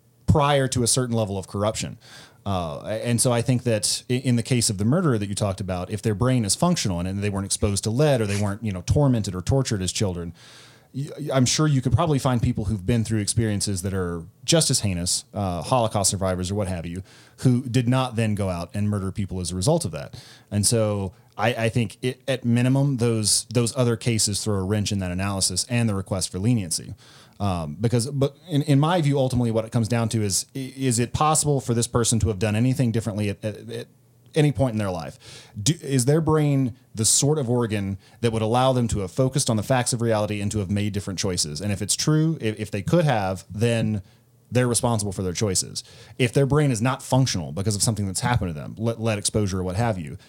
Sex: male